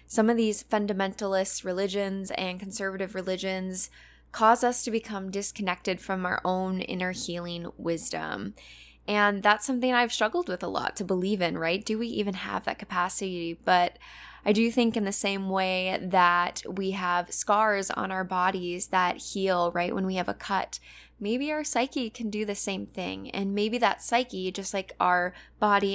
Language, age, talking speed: English, 10-29, 175 wpm